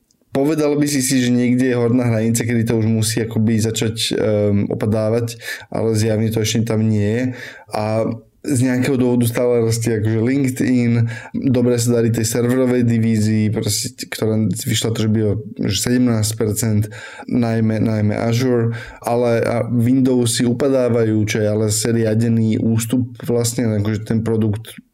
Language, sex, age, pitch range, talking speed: Slovak, male, 20-39, 110-120 Hz, 140 wpm